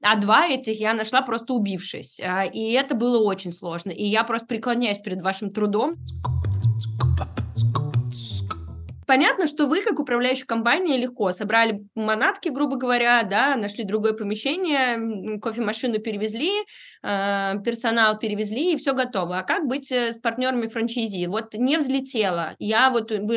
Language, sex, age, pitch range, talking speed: Russian, female, 20-39, 200-245 Hz, 130 wpm